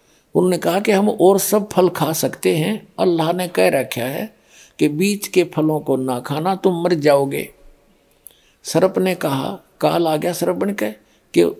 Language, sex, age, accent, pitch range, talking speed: Hindi, male, 50-69, native, 160-195 Hz, 175 wpm